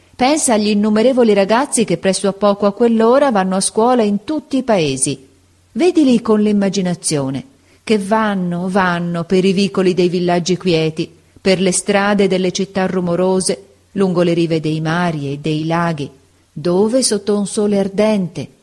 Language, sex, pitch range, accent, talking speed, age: Italian, female, 165-220 Hz, native, 155 wpm, 40-59